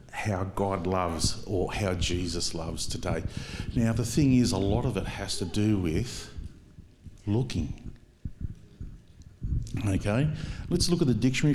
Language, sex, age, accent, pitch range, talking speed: English, male, 50-69, Australian, 100-140 Hz, 140 wpm